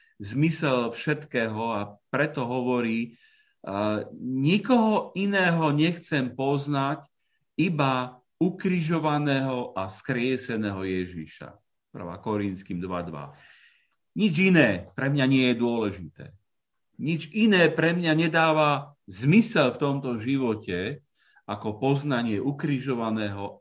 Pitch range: 115-160 Hz